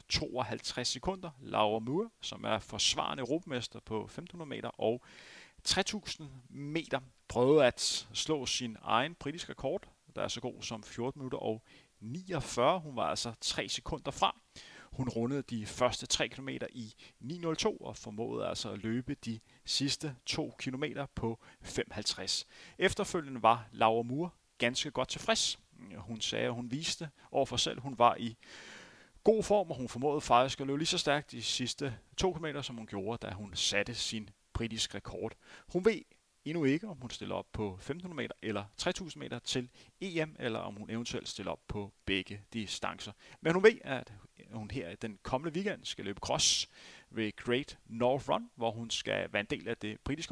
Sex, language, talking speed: male, Danish, 175 wpm